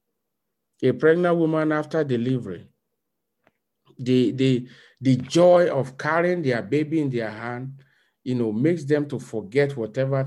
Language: English